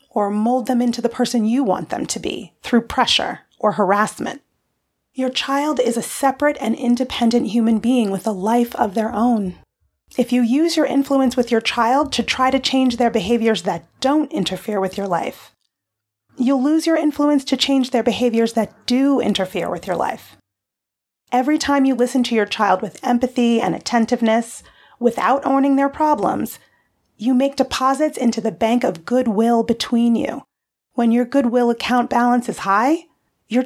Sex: female